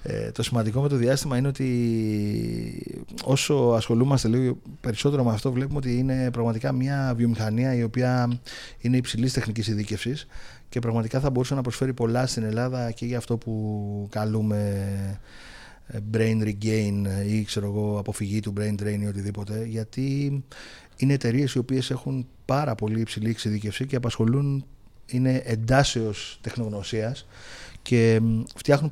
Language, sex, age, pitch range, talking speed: Greek, male, 30-49, 110-130 Hz, 135 wpm